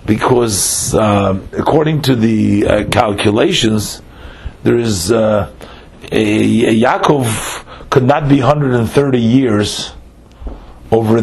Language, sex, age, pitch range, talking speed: English, male, 40-59, 105-130 Hz, 100 wpm